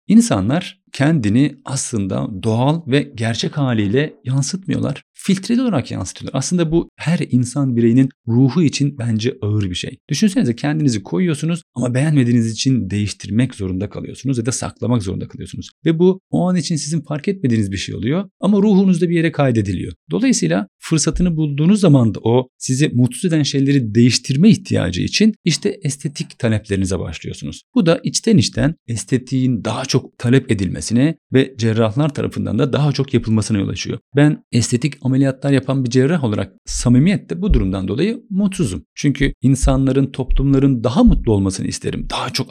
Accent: native